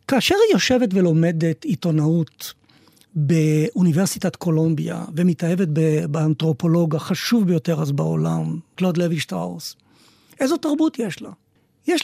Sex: male